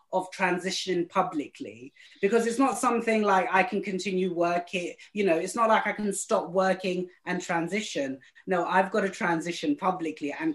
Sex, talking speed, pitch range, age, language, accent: female, 170 wpm, 180-225 Hz, 30-49, English, British